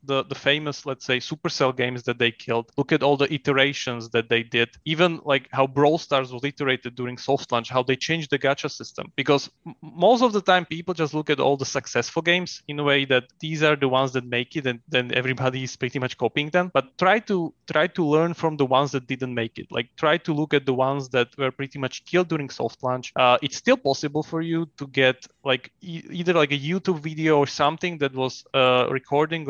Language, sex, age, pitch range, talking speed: English, male, 20-39, 130-155 Hz, 235 wpm